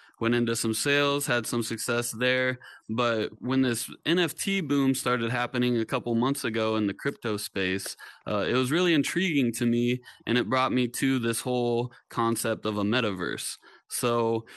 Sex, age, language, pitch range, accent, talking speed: male, 20-39, English, 110-135 Hz, American, 175 wpm